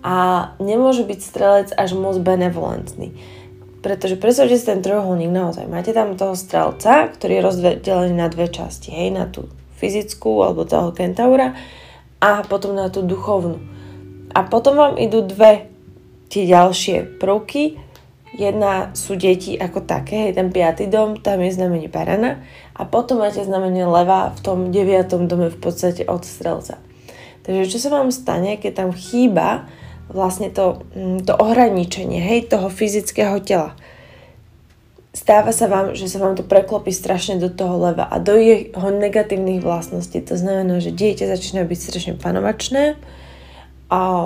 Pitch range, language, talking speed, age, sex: 175-205 Hz, Slovak, 150 wpm, 20-39, female